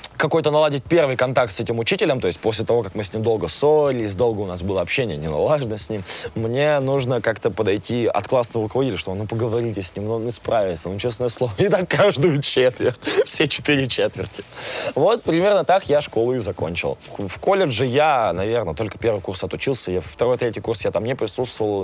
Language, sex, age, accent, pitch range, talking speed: Russian, male, 20-39, native, 120-150 Hz, 200 wpm